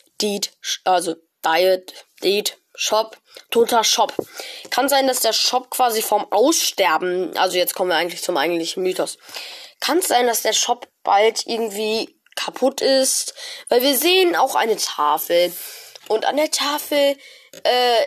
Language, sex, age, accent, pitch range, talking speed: German, female, 10-29, German, 185-250 Hz, 145 wpm